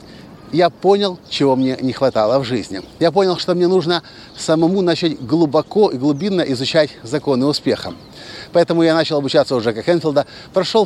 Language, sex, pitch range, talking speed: Russian, male, 135-175 Hz, 160 wpm